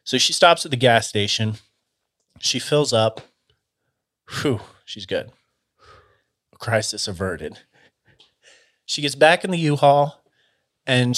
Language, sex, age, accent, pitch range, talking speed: English, male, 30-49, American, 105-125 Hz, 115 wpm